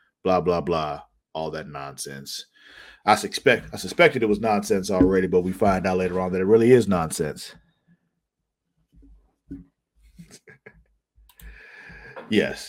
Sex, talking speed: male, 125 wpm